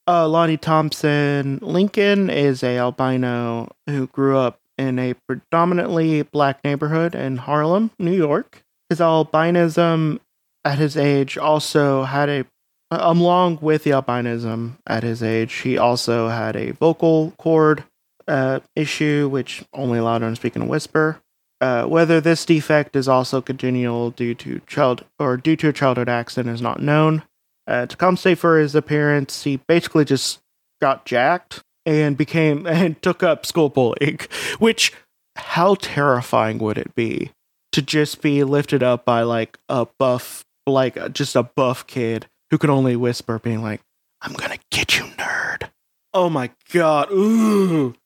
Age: 30-49